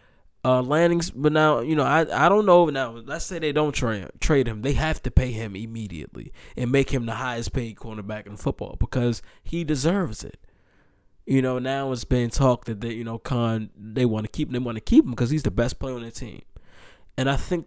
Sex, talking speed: male, 230 wpm